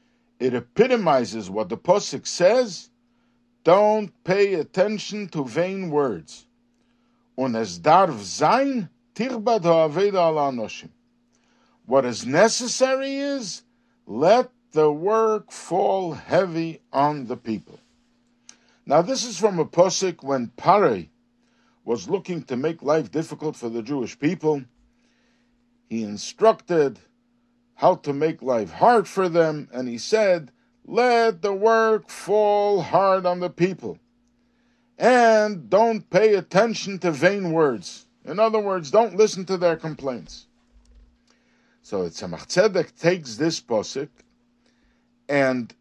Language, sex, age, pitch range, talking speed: English, male, 60-79, 140-235 Hz, 110 wpm